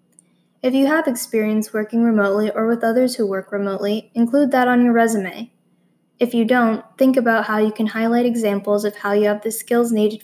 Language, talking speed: English, 200 wpm